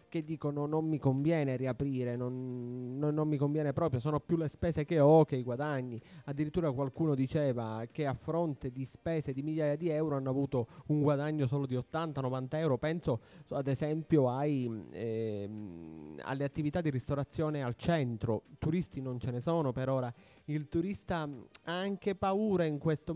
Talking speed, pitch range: 170 wpm, 135-170 Hz